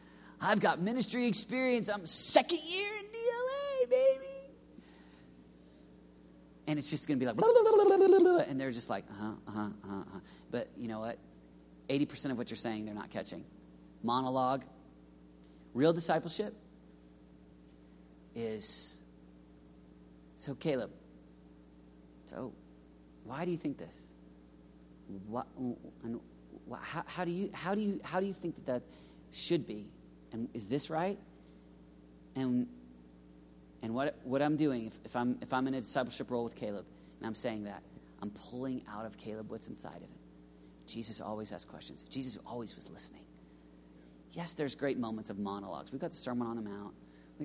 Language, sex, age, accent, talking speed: English, male, 40-59, American, 165 wpm